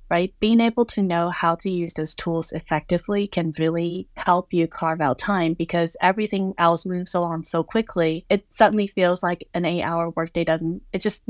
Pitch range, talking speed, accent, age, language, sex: 170-195 Hz, 185 wpm, American, 20-39, English, female